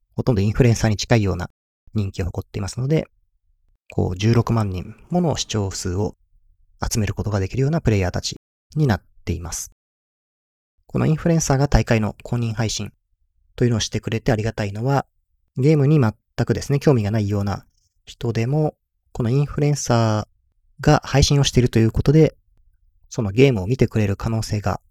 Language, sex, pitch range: Japanese, male, 95-125 Hz